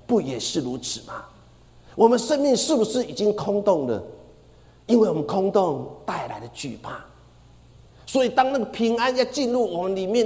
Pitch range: 180-240 Hz